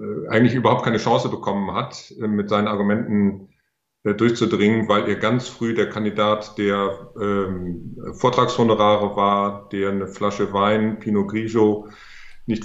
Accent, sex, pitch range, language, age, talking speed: German, male, 105-120 Hz, German, 40-59, 125 wpm